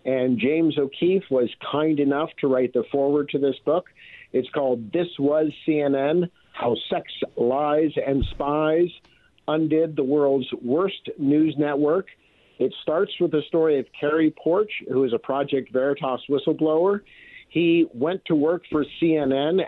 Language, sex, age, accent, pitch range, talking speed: English, male, 50-69, American, 140-170 Hz, 150 wpm